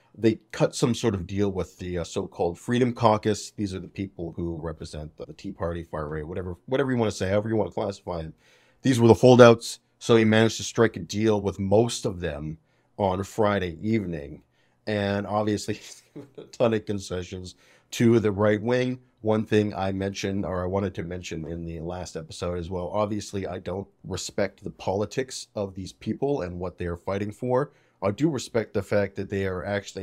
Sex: male